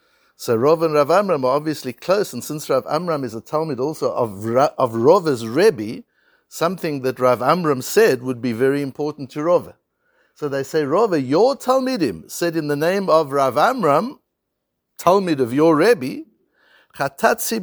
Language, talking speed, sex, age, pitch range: English, 165 wpm, male, 60-79, 135-205 Hz